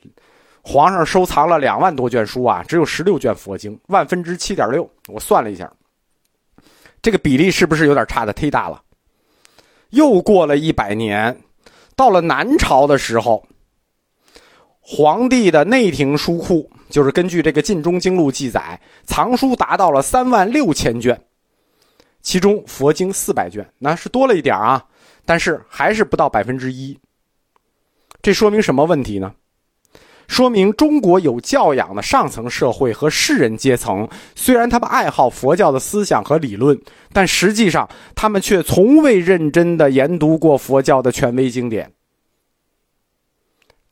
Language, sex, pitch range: Chinese, male, 135-205 Hz